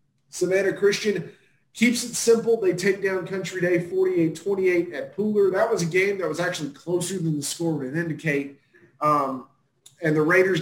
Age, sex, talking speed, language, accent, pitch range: 30-49, male, 170 wpm, English, American, 155-195 Hz